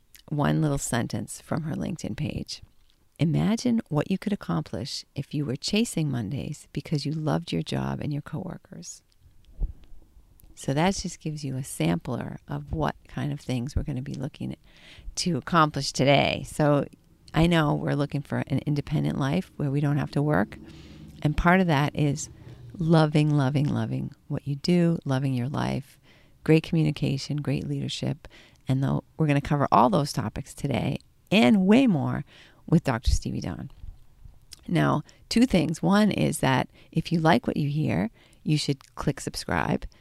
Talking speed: 165 wpm